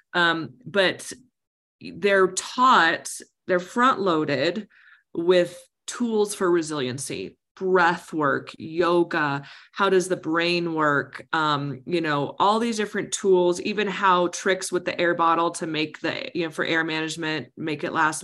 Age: 20-39